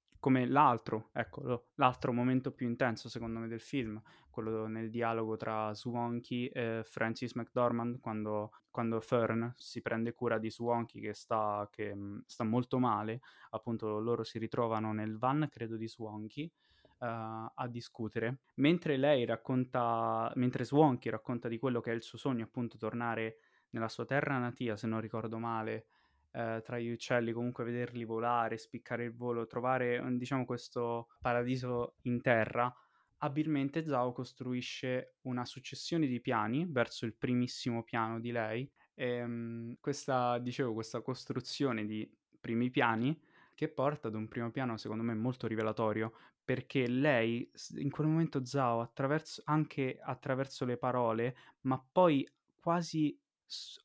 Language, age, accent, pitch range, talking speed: Italian, 20-39, native, 115-130 Hz, 145 wpm